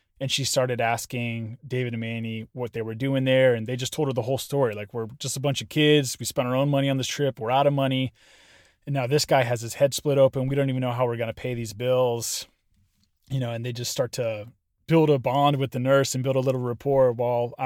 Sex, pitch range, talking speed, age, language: male, 115-150 Hz, 260 wpm, 20-39, English